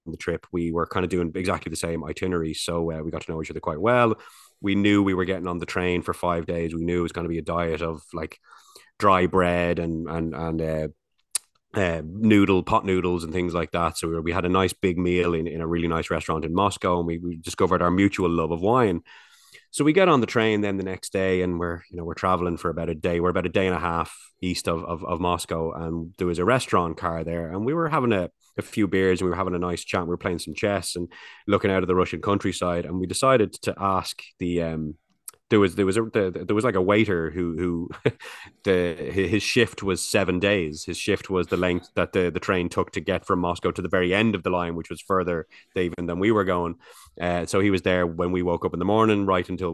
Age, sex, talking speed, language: 20-39, male, 260 wpm, English